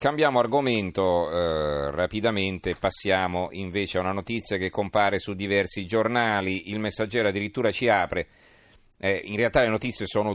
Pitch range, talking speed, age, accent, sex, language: 90-110 Hz, 145 wpm, 40-59, native, male, Italian